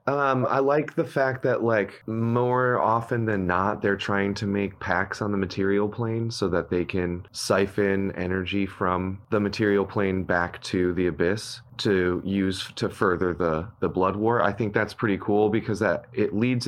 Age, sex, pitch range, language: 30-49, male, 95-120 Hz, English